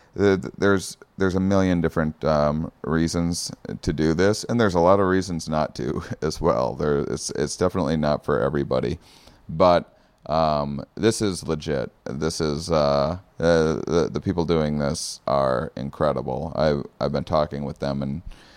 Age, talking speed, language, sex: 30-49, 165 wpm, English, male